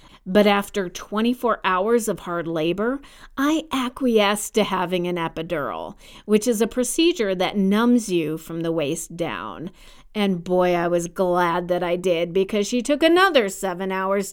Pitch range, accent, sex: 180-255 Hz, American, female